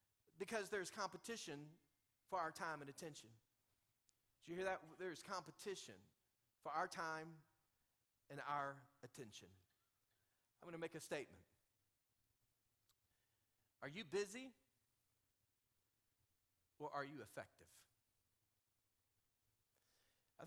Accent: American